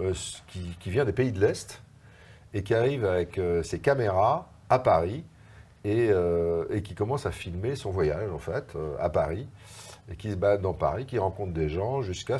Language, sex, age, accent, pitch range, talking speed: French, male, 50-69, French, 90-110 Hz, 200 wpm